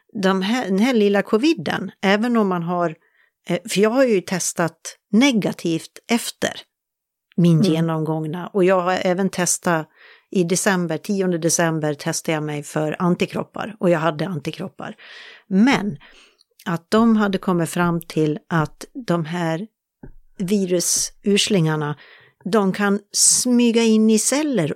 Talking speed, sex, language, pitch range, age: 130 wpm, female, Swedish, 165-205 Hz, 60-79